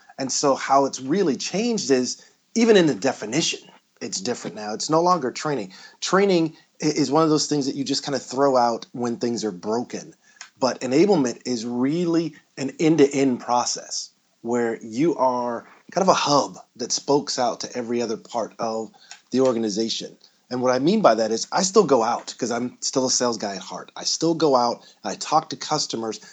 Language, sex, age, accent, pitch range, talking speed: English, male, 30-49, American, 120-155 Hz, 200 wpm